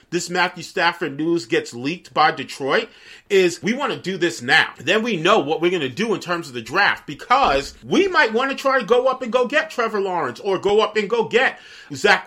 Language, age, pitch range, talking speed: English, 40-59, 145-190 Hz, 240 wpm